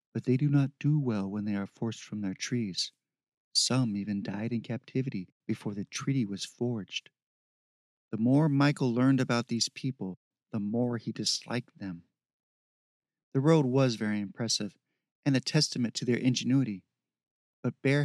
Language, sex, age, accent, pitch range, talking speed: English, male, 40-59, American, 115-135 Hz, 160 wpm